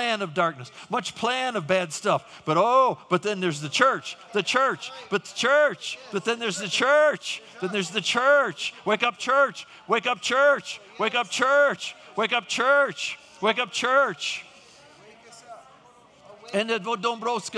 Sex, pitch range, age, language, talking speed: male, 185-250 Hz, 50-69, English, 150 wpm